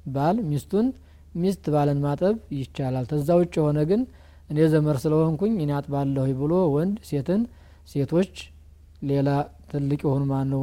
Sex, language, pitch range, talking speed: male, Amharic, 130-160 Hz, 125 wpm